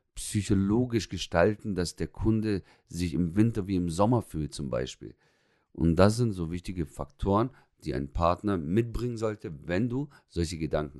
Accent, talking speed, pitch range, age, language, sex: German, 160 wpm, 75-95 Hz, 50-69, German, male